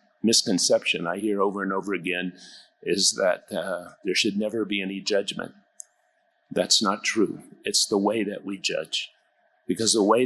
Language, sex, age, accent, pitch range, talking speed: English, male, 50-69, American, 100-145 Hz, 165 wpm